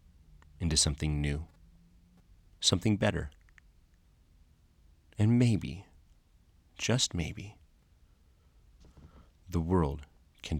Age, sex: 30-49, male